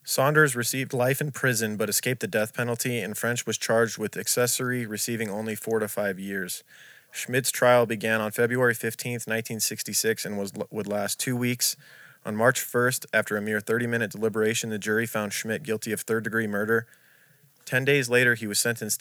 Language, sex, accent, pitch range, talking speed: English, male, American, 110-120 Hz, 180 wpm